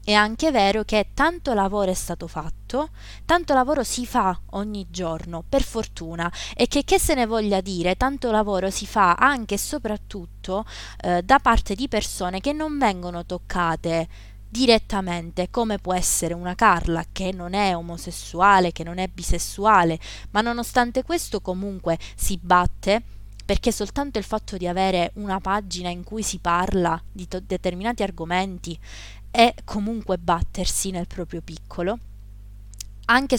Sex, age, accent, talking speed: female, 20-39, native, 150 wpm